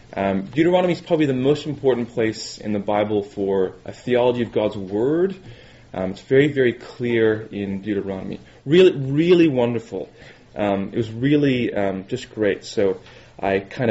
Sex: male